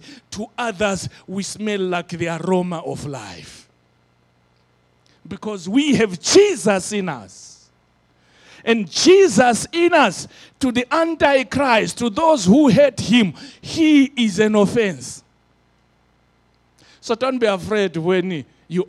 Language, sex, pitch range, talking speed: English, male, 130-210 Hz, 120 wpm